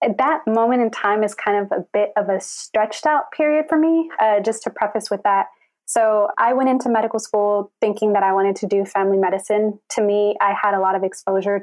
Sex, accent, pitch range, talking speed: female, American, 195-225 Hz, 225 wpm